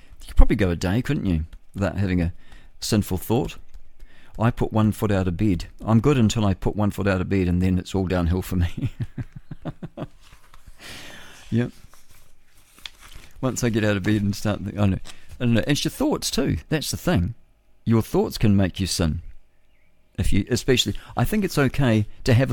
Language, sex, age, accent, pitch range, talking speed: English, male, 50-69, British, 90-115 Hz, 200 wpm